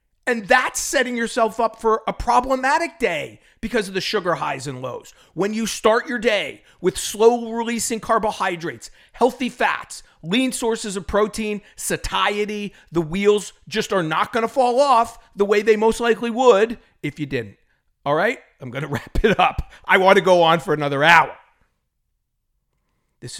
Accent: American